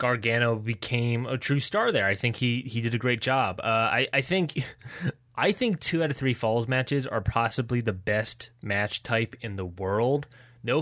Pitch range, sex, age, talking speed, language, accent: 110-130 Hz, male, 20-39, 200 wpm, English, American